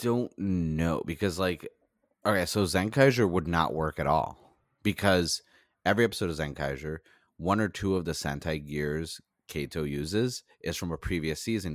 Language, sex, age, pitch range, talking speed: English, male, 30-49, 80-100 Hz, 160 wpm